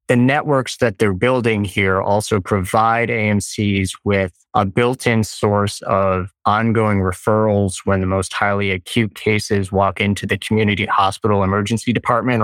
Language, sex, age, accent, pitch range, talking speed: English, male, 20-39, American, 95-115 Hz, 140 wpm